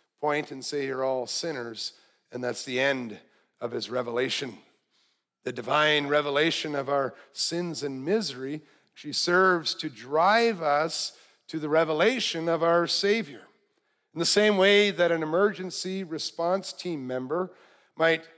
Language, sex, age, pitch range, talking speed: English, male, 50-69, 150-190 Hz, 135 wpm